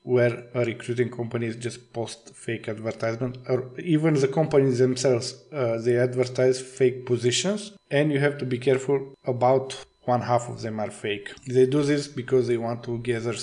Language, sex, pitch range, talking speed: English, male, 115-135 Hz, 180 wpm